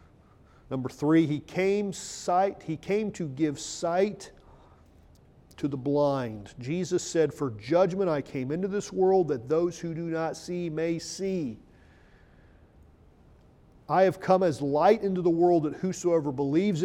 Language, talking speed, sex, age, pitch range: English, 145 wpm, male, 40-59, 130-175 Hz